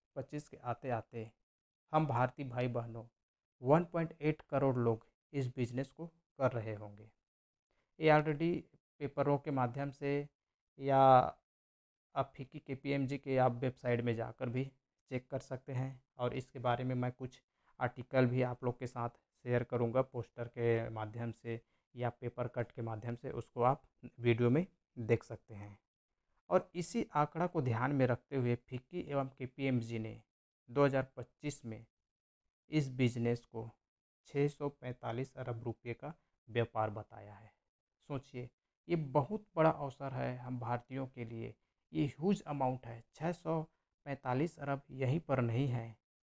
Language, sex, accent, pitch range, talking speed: Hindi, male, native, 120-145 Hz, 145 wpm